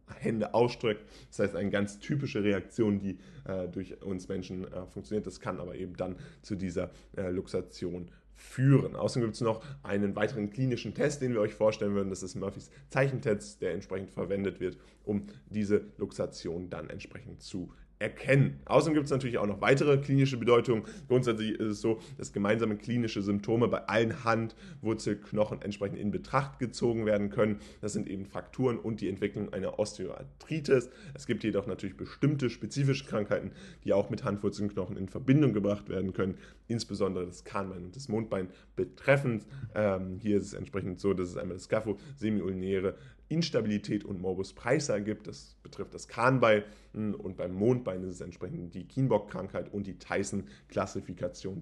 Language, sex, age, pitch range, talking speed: German, male, 10-29, 95-120 Hz, 165 wpm